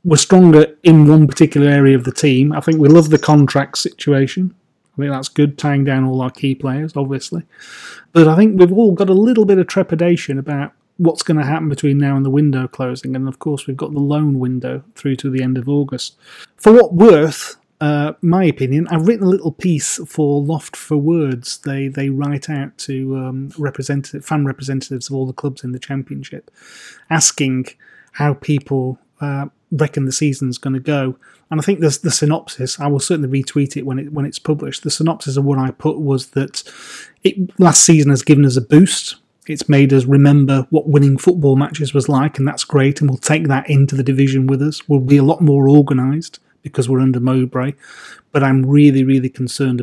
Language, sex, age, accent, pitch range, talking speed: English, male, 30-49, British, 135-155 Hz, 210 wpm